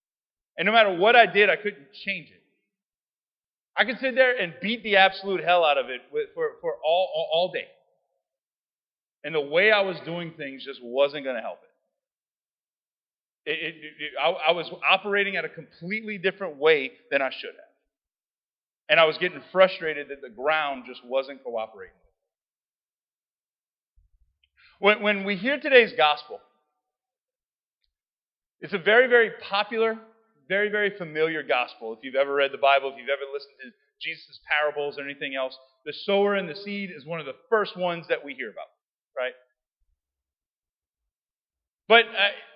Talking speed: 165 wpm